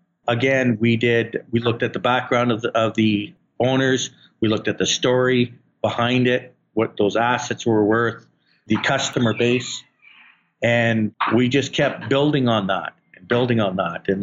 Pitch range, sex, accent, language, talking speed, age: 110-130 Hz, male, American, English, 165 wpm, 50-69